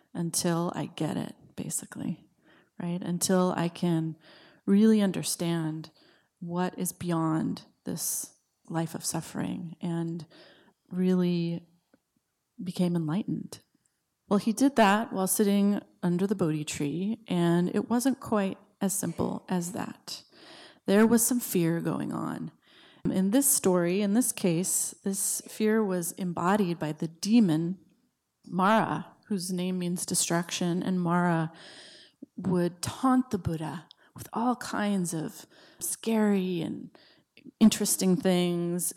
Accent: American